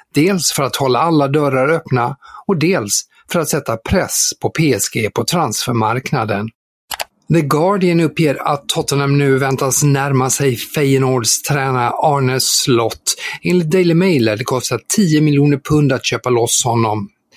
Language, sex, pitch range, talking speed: Swedish, male, 120-155 Hz, 145 wpm